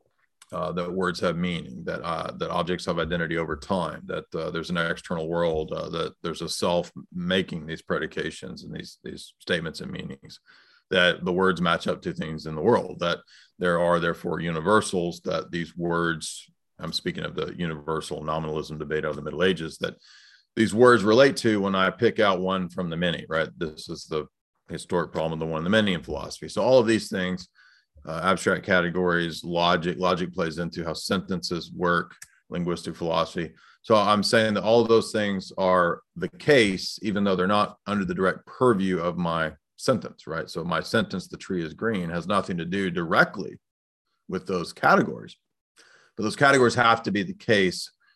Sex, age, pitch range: male, 40-59, 85-110 Hz